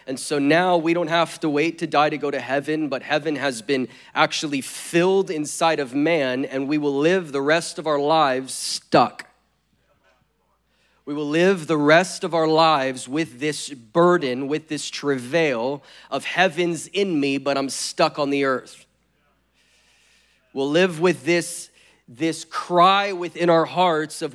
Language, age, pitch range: English, 30-49, 145-175 Hz